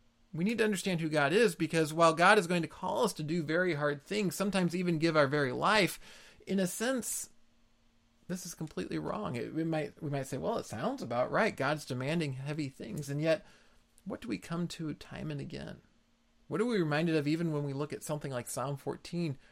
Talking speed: 215 wpm